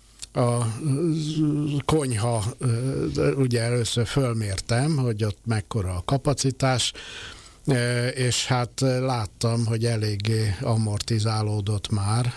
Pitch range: 105-125 Hz